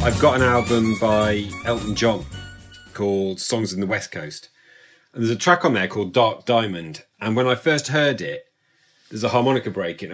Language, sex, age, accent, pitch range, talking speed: English, male, 40-59, British, 100-135 Hz, 195 wpm